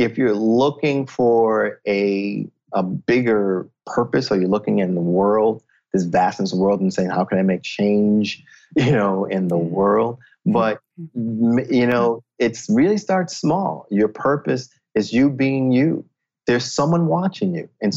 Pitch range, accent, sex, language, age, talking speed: 105-135 Hz, American, male, English, 30-49, 165 wpm